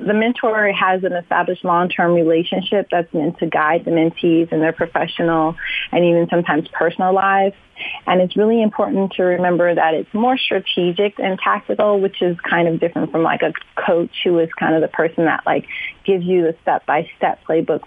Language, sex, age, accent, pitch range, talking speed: English, female, 30-49, American, 165-195 Hz, 185 wpm